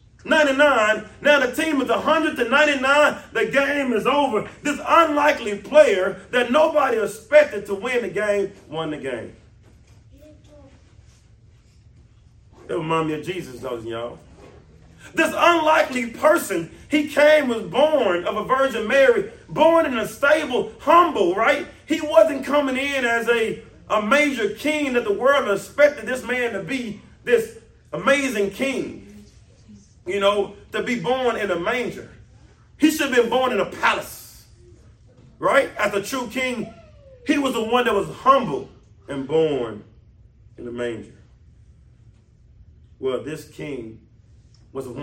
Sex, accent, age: male, American, 40-59